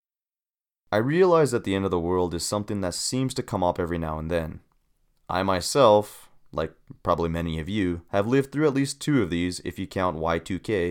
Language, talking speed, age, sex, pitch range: English, 210 wpm, 30-49, male, 85-105 Hz